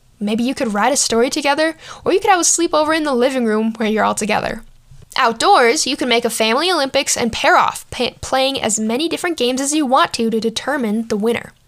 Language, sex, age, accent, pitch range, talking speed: English, female, 10-29, American, 220-275 Hz, 225 wpm